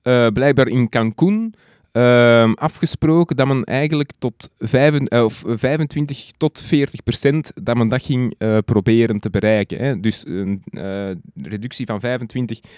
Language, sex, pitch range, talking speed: Dutch, male, 115-145 Hz, 155 wpm